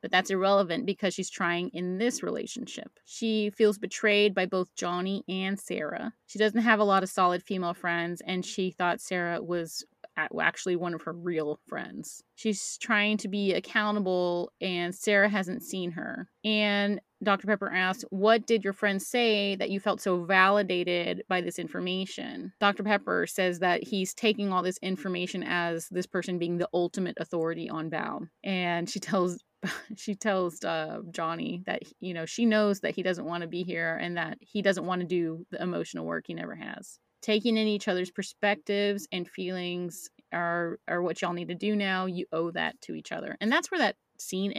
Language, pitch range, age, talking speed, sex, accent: English, 175-210 Hz, 30-49, 190 wpm, female, American